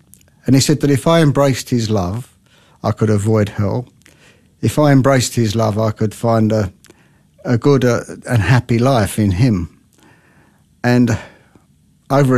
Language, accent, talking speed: English, British, 155 wpm